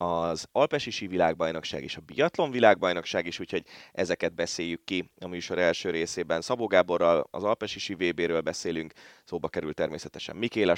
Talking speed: 140 wpm